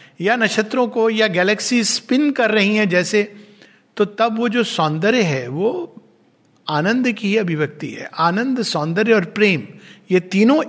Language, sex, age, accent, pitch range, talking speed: Hindi, male, 60-79, native, 155-210 Hz, 150 wpm